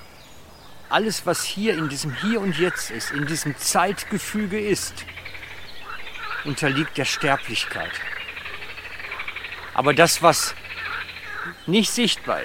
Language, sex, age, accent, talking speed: German, male, 50-69, German, 100 wpm